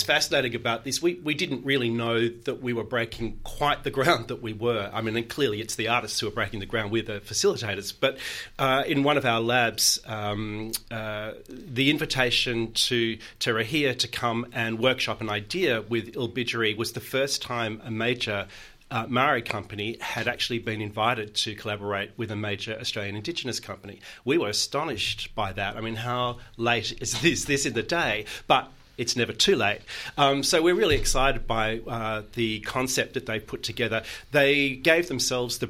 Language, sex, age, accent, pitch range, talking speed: English, male, 40-59, Australian, 110-130 Hz, 190 wpm